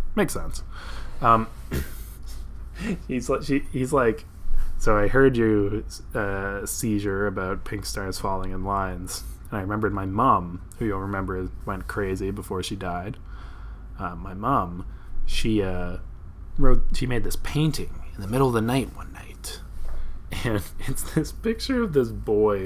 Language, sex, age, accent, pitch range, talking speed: English, male, 20-39, American, 90-105 Hz, 150 wpm